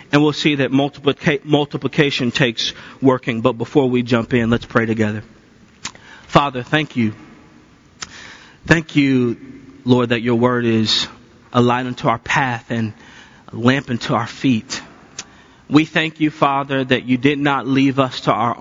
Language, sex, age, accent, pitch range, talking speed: English, male, 40-59, American, 115-135 Hz, 155 wpm